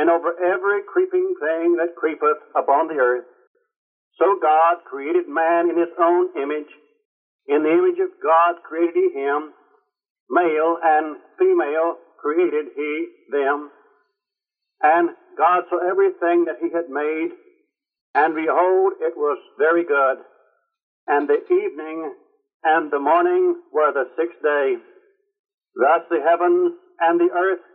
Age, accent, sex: 60-79, American, male